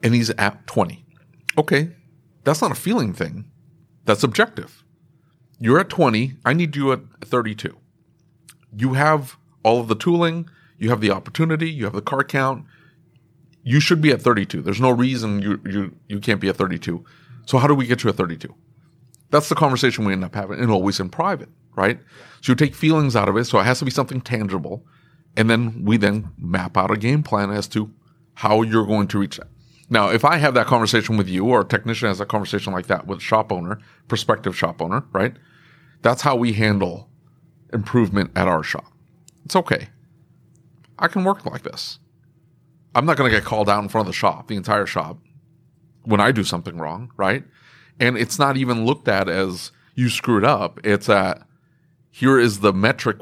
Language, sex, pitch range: English, male, 105-150 Hz